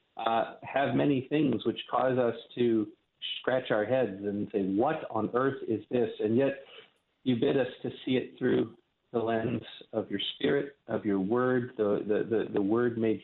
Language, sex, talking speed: English, male, 185 wpm